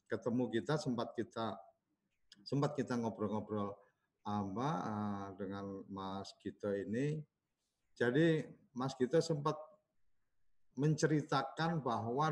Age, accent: 50-69, native